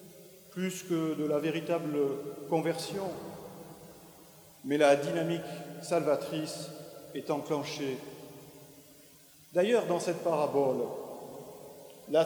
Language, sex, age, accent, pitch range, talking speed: French, male, 50-69, French, 145-180 Hz, 85 wpm